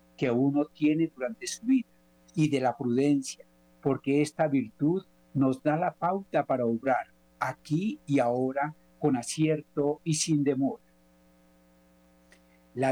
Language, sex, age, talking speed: Spanish, male, 50-69, 130 wpm